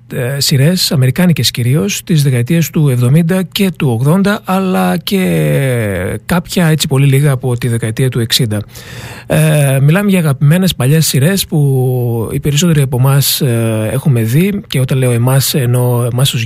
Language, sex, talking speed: Greek, male, 145 wpm